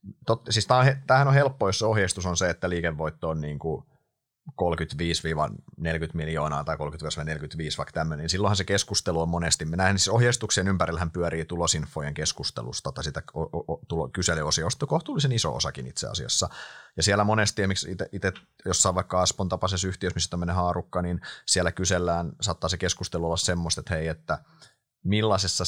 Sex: male